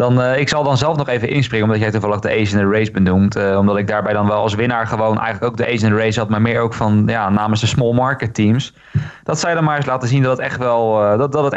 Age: 20-39